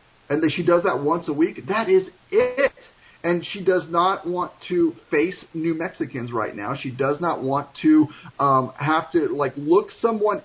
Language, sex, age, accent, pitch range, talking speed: English, male, 40-59, American, 140-200 Hz, 190 wpm